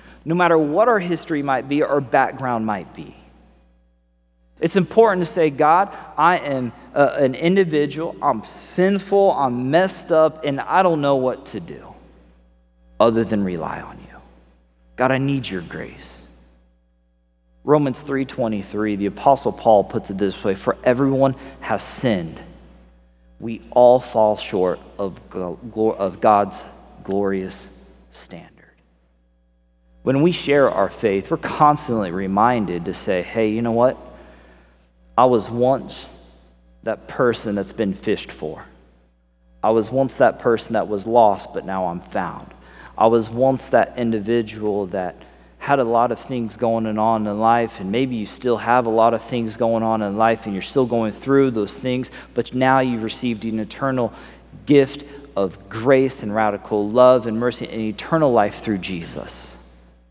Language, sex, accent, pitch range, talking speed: English, male, American, 85-135 Hz, 155 wpm